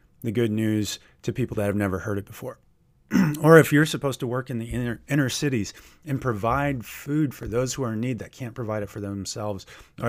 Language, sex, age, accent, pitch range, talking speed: English, male, 30-49, American, 110-140 Hz, 225 wpm